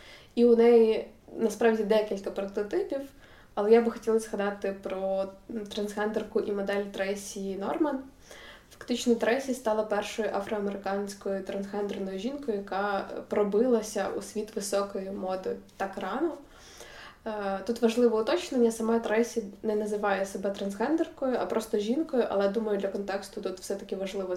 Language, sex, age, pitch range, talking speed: Ukrainian, female, 20-39, 200-230 Hz, 125 wpm